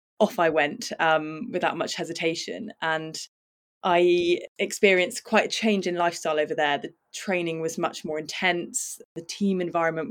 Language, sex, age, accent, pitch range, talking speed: English, female, 20-39, British, 165-190 Hz, 155 wpm